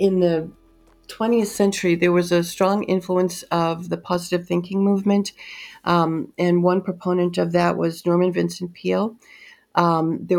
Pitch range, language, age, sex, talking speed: 175-200 Hz, English, 50-69, female, 150 wpm